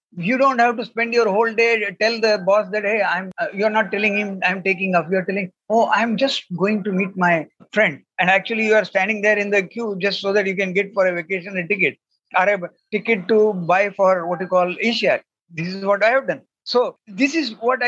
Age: 50-69